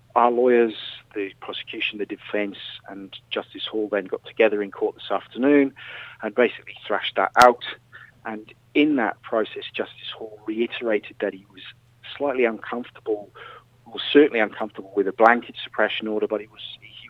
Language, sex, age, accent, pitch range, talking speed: English, male, 40-59, British, 105-125 Hz, 150 wpm